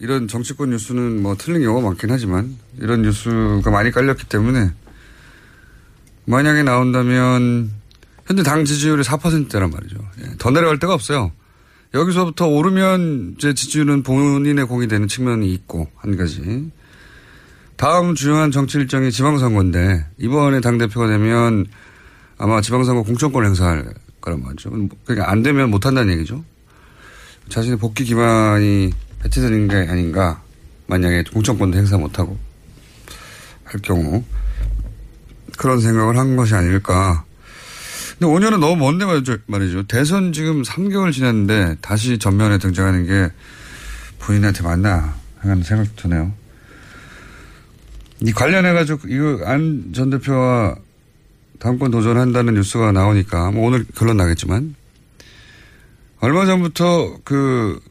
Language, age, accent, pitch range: Korean, 30-49, native, 100-135 Hz